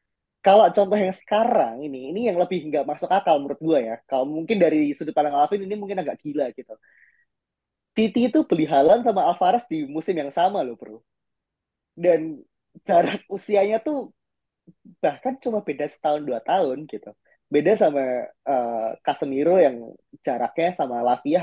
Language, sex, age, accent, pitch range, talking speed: Indonesian, male, 20-39, native, 130-185 Hz, 155 wpm